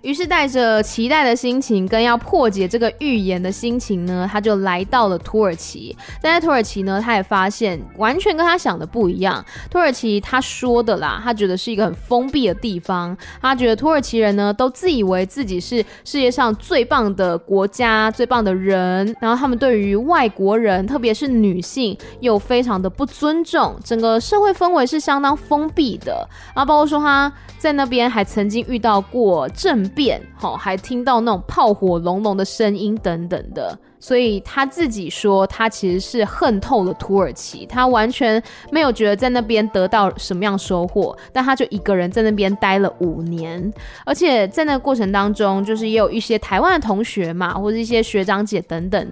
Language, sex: Chinese, female